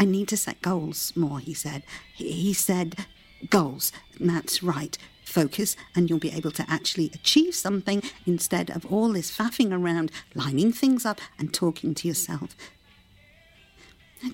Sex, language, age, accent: female, English, 50-69, British